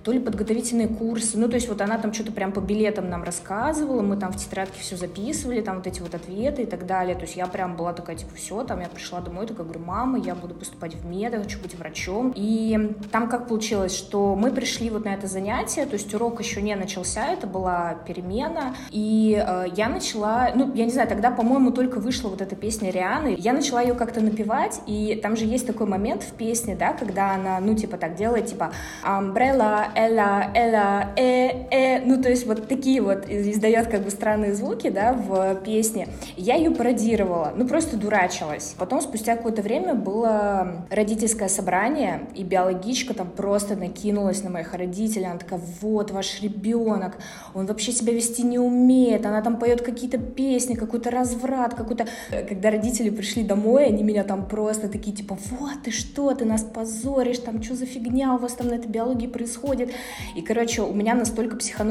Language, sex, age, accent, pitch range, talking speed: Russian, female, 20-39, native, 195-240 Hz, 200 wpm